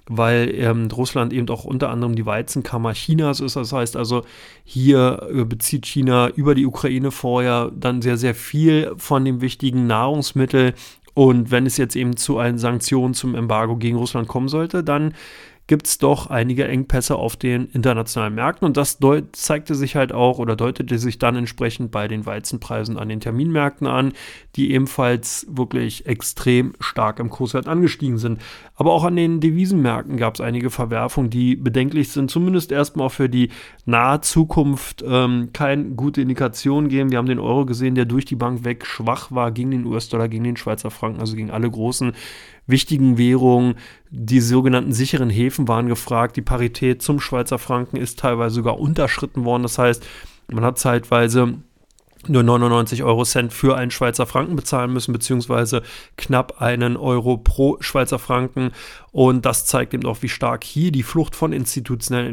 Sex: male